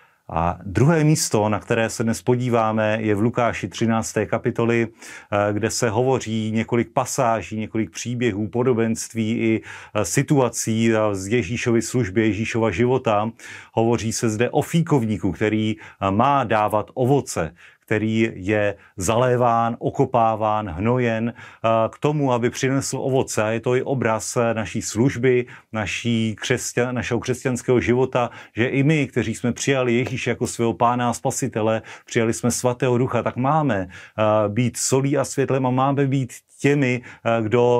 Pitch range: 110-130 Hz